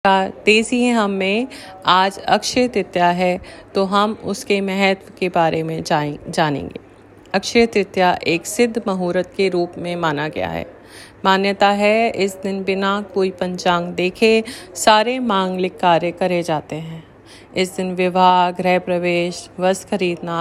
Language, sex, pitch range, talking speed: Hindi, female, 175-205 Hz, 140 wpm